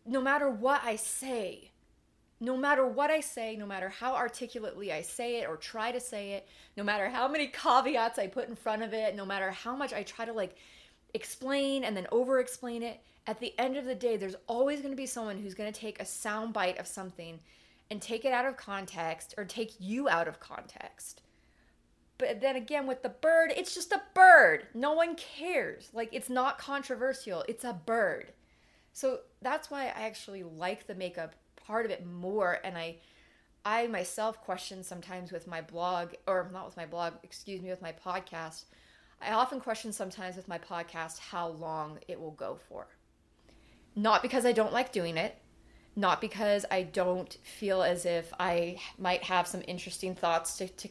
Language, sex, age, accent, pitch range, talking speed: English, female, 30-49, American, 185-255 Hz, 195 wpm